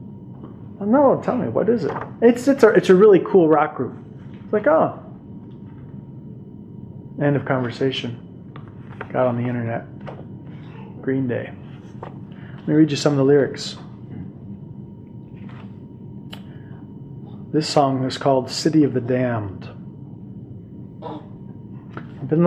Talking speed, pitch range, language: 120 wpm, 130-175 Hz, English